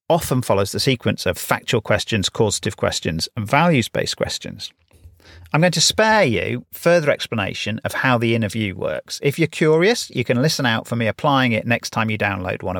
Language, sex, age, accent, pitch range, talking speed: English, male, 40-59, British, 110-155 Hz, 190 wpm